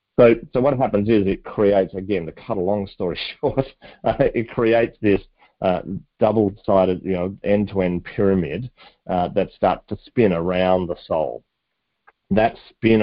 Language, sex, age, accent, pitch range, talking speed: English, male, 40-59, Australian, 85-100 Hz, 150 wpm